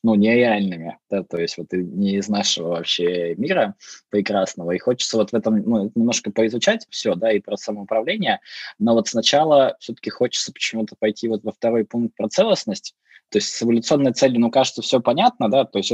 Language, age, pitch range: Russian, 20-39, 100-125 Hz